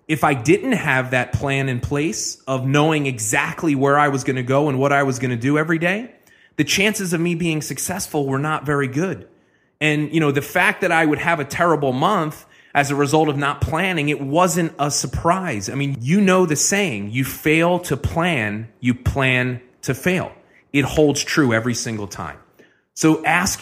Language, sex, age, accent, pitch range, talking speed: English, male, 30-49, American, 125-165 Hz, 205 wpm